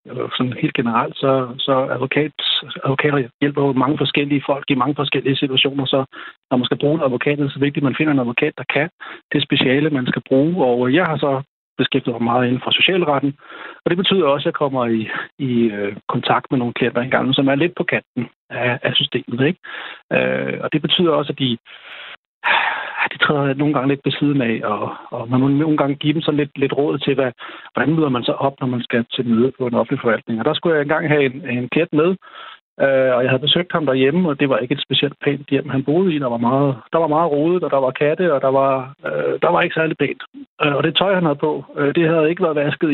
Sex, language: male, Danish